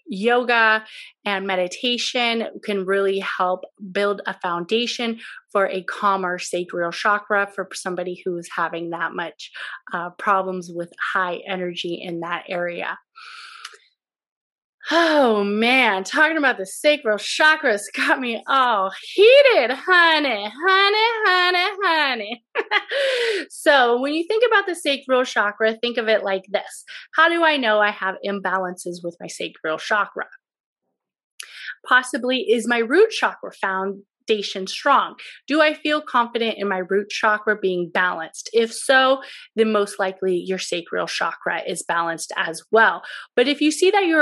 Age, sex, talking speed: 30-49, female, 140 wpm